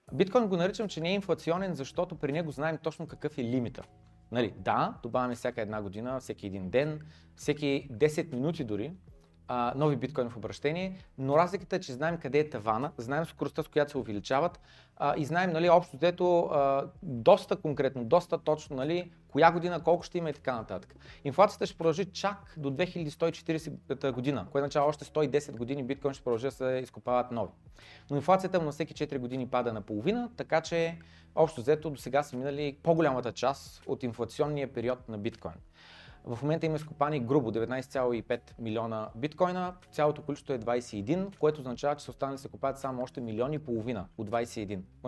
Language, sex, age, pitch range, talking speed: Bulgarian, male, 30-49, 120-160 Hz, 185 wpm